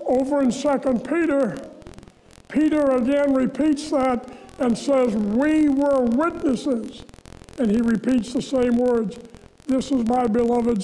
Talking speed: 125 wpm